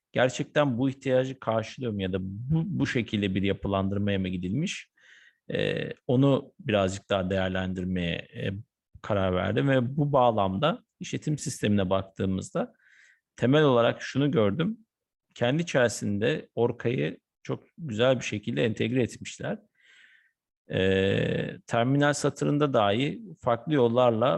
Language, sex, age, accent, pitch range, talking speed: Turkish, male, 50-69, native, 105-130 Hz, 105 wpm